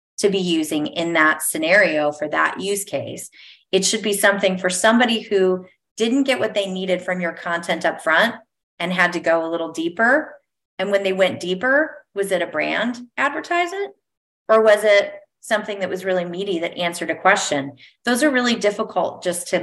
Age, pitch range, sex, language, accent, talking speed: 30-49, 180-210 Hz, female, English, American, 190 wpm